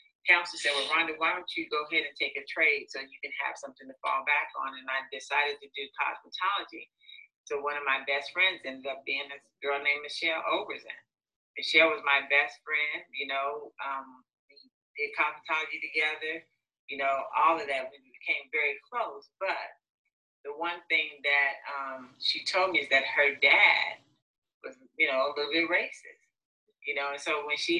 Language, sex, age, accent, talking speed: English, female, 40-59, American, 190 wpm